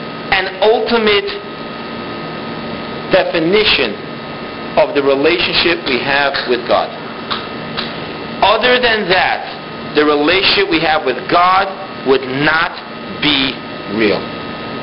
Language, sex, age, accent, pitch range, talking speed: English, male, 50-69, American, 165-220 Hz, 95 wpm